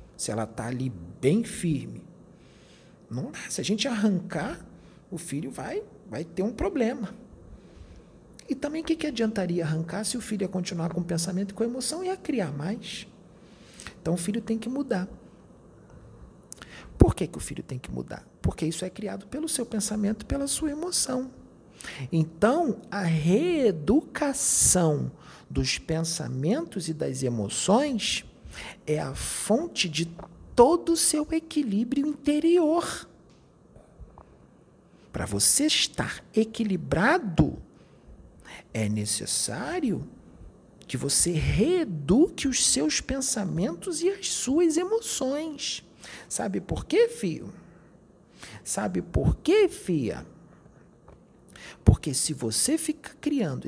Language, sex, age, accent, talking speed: Portuguese, male, 40-59, Brazilian, 125 wpm